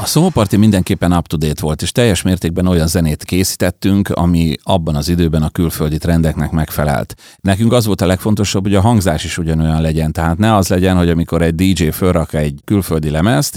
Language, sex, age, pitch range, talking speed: Hungarian, male, 30-49, 85-100 Hz, 185 wpm